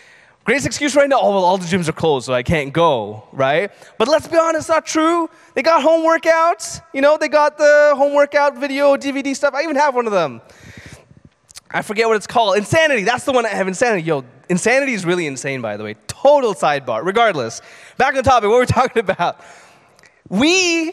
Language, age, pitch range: English, 20-39, 195-285 Hz